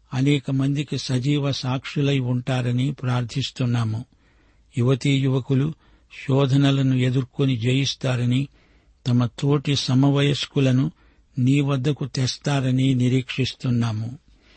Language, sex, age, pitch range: Telugu, male, 60-79, 125-140 Hz